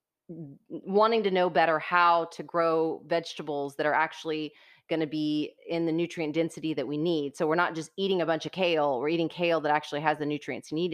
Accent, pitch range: American, 150-170 Hz